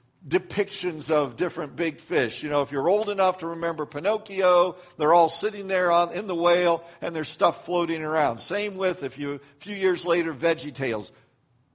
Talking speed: 190 wpm